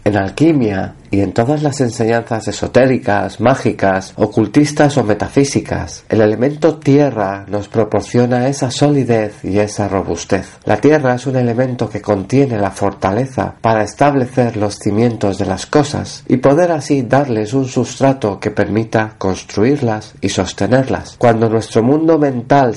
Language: Spanish